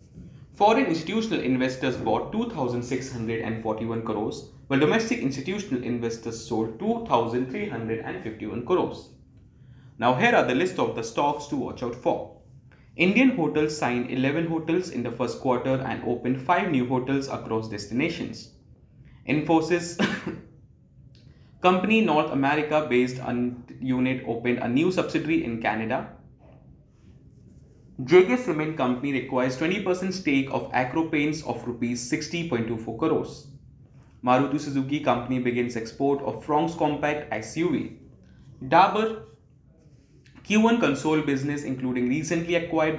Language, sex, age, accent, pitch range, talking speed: English, male, 20-39, Indian, 125-160 Hz, 115 wpm